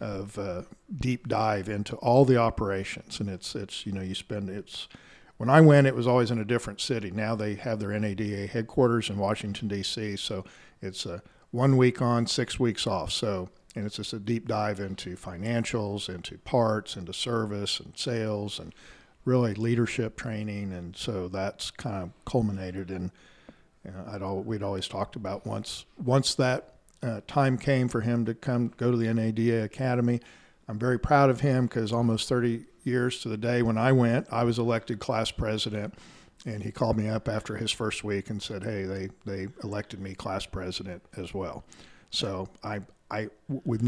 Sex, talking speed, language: male, 185 wpm, English